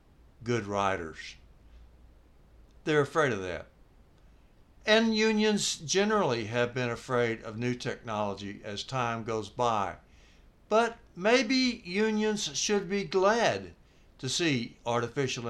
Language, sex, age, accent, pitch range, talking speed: English, male, 60-79, American, 110-185 Hz, 110 wpm